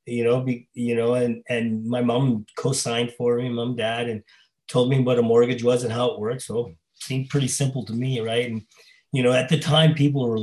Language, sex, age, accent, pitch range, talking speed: English, male, 30-49, American, 115-145 Hz, 240 wpm